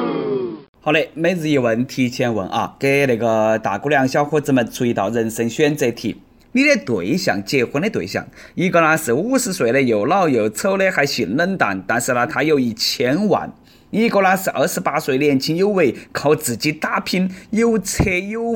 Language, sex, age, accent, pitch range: Chinese, male, 20-39, native, 135-190 Hz